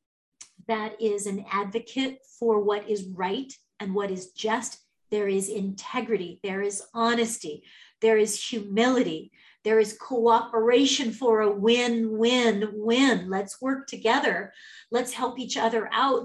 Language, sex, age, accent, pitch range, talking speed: English, female, 40-59, American, 200-235 Hz, 135 wpm